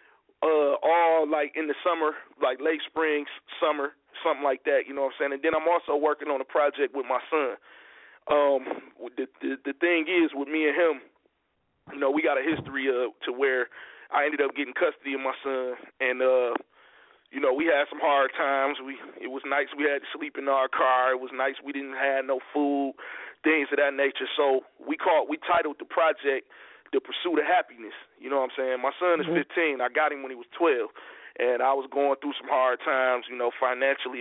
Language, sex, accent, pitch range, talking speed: English, male, American, 135-170 Hz, 225 wpm